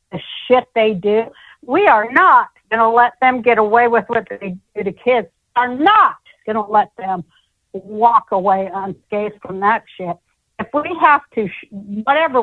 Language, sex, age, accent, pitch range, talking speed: English, female, 60-79, American, 200-270 Hz, 180 wpm